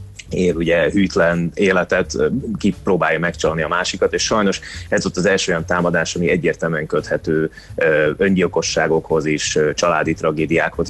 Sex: male